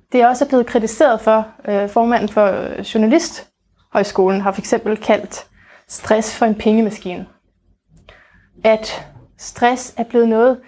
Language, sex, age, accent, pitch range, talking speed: Danish, female, 30-49, native, 215-250 Hz, 125 wpm